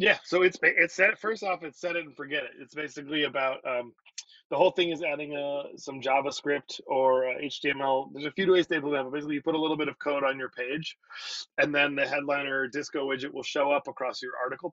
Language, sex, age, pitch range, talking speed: English, male, 30-49, 130-165 Hz, 230 wpm